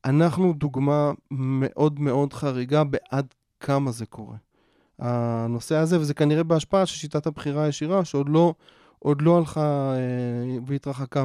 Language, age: Hebrew, 20-39